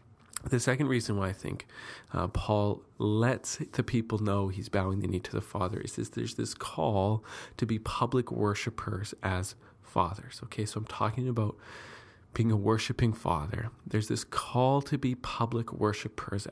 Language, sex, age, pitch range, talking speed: English, male, 40-59, 100-120 Hz, 165 wpm